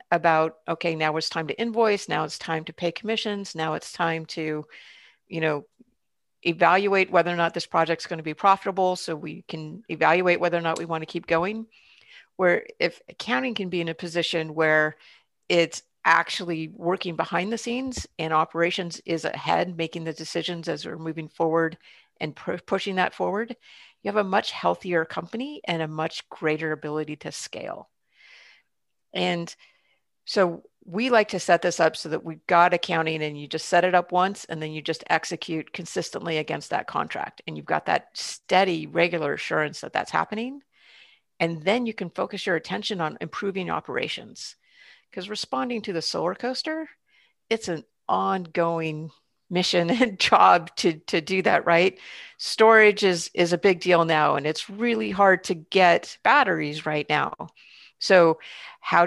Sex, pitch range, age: female, 160-200 Hz, 50-69